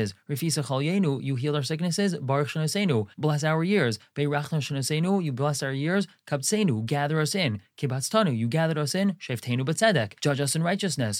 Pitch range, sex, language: 135-170 Hz, male, English